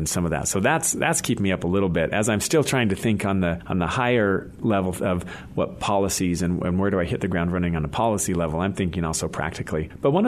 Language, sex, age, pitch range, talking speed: English, male, 40-59, 90-115 Hz, 270 wpm